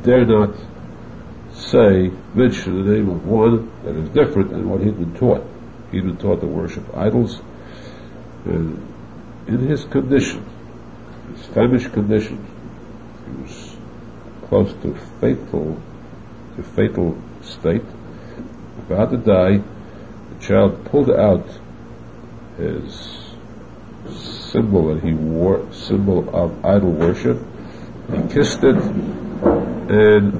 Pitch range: 90-115 Hz